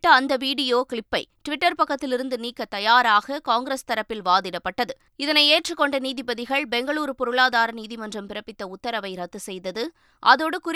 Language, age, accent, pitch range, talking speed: Tamil, 20-39, native, 220-270 Hz, 110 wpm